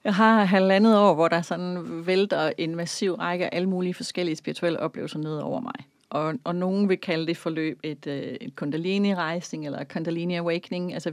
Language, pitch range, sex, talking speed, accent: Danish, 160-185 Hz, female, 190 wpm, native